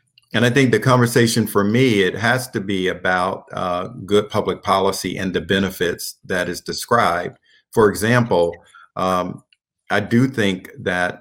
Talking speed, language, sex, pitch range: 155 wpm, English, male, 95-110 Hz